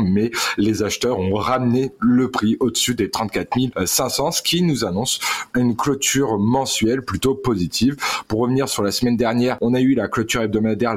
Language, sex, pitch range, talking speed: French, male, 105-130 Hz, 175 wpm